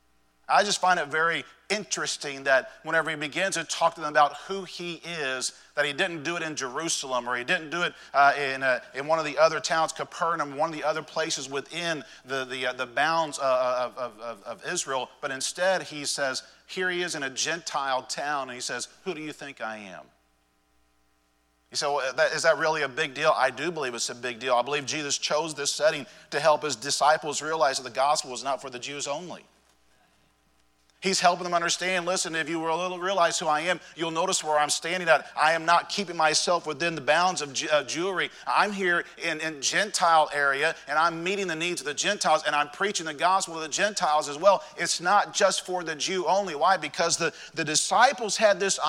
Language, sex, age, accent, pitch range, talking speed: English, male, 40-59, American, 140-180 Hz, 215 wpm